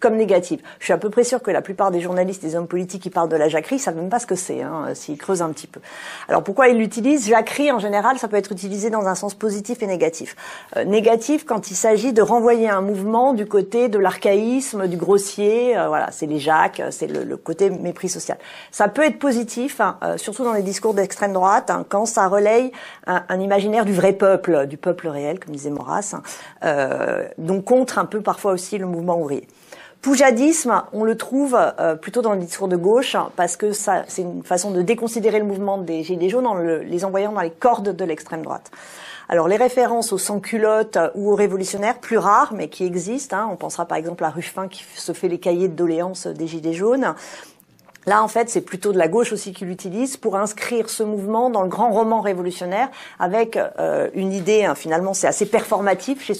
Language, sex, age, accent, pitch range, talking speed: French, female, 40-59, French, 185-230 Hz, 215 wpm